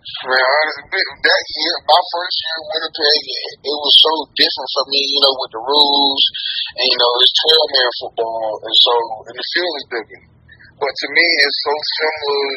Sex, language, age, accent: male, English, 20-39, American